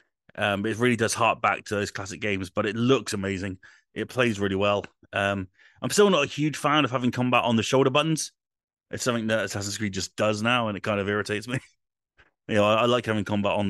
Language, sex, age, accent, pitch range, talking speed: English, male, 30-49, British, 95-115 Hz, 235 wpm